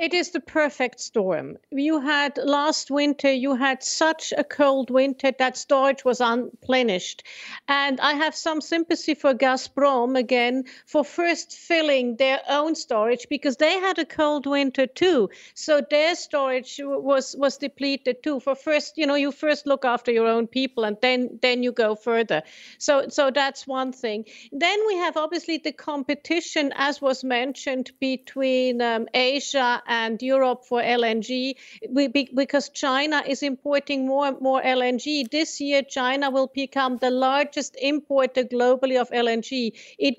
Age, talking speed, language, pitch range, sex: 50-69, 155 wpm, English, 255-295 Hz, female